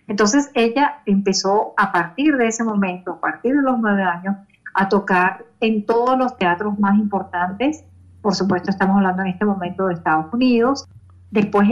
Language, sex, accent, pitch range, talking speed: Spanish, female, American, 175-220 Hz, 170 wpm